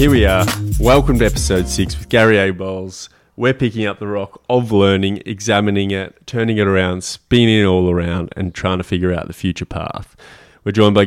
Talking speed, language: 205 wpm, English